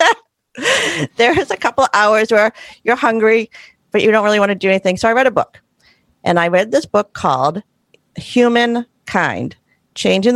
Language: English